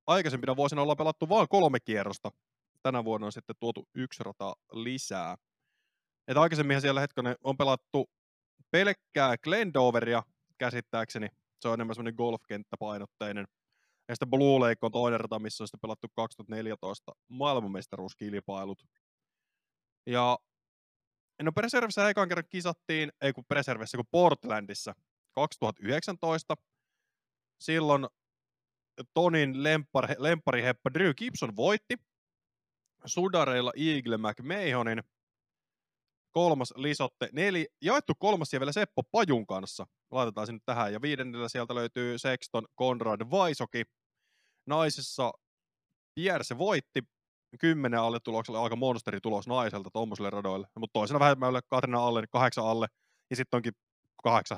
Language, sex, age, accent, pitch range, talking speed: Finnish, male, 20-39, native, 110-145 Hz, 115 wpm